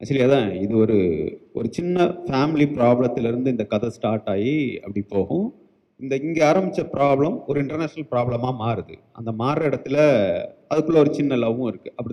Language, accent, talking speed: Tamil, native, 155 wpm